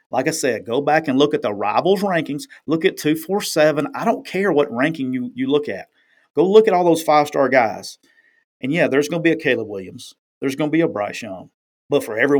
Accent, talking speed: American, 235 wpm